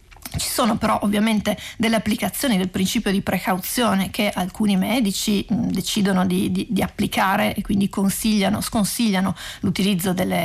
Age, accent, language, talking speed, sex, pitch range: 30-49, native, Italian, 145 wpm, female, 195-225 Hz